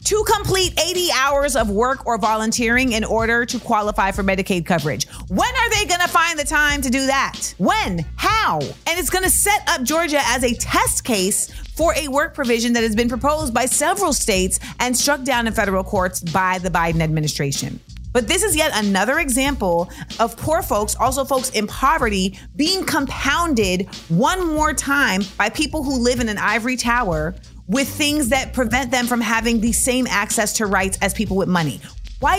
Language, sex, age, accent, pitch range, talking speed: English, female, 30-49, American, 205-275 Hz, 185 wpm